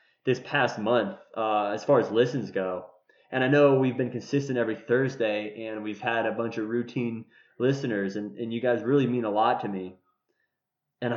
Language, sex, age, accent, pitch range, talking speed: English, male, 20-39, American, 100-130 Hz, 195 wpm